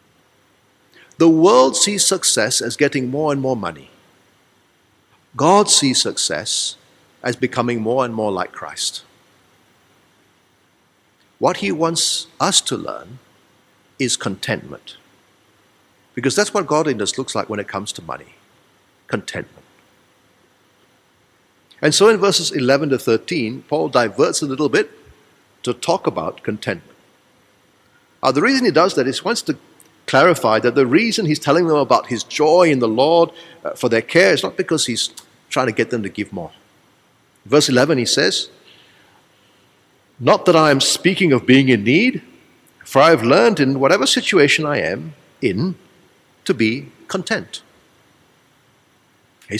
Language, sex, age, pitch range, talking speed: English, male, 50-69, 125-170 Hz, 145 wpm